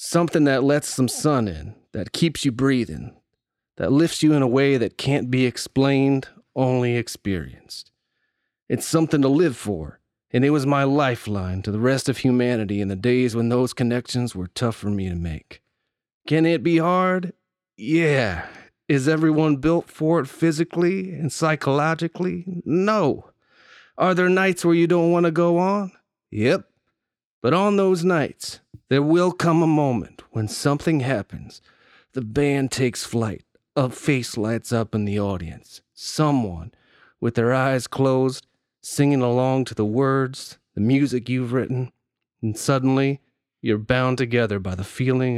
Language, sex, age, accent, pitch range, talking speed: English, male, 40-59, American, 115-155 Hz, 155 wpm